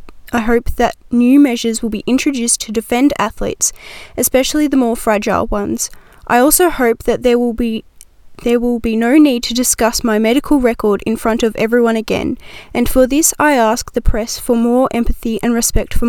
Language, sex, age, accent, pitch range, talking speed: Italian, female, 10-29, Australian, 230-265 Hz, 190 wpm